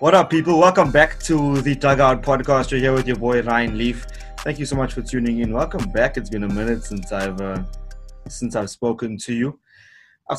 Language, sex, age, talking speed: English, male, 20-39, 225 wpm